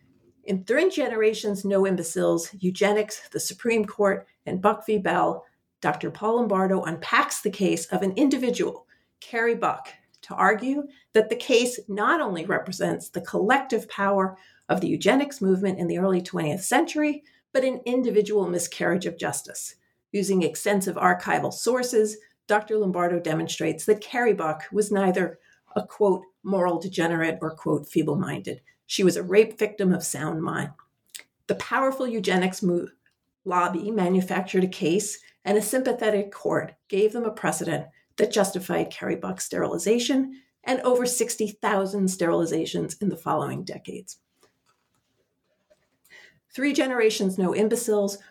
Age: 50-69